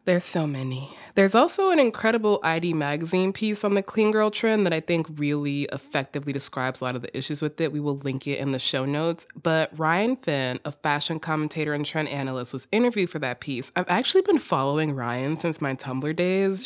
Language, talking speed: English, 215 wpm